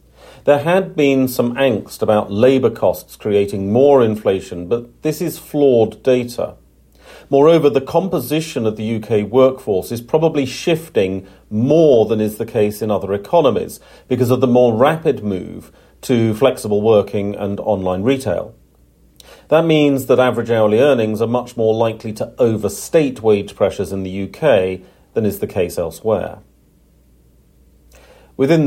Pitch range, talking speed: 100-130 Hz, 145 wpm